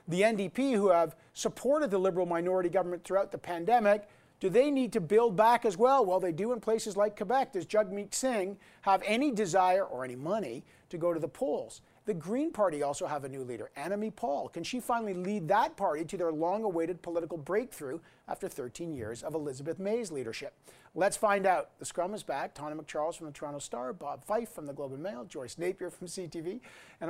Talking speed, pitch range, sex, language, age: 210 wpm, 170-215 Hz, male, English, 50-69